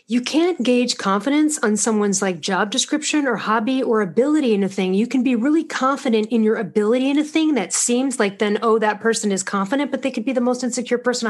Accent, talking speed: American, 235 wpm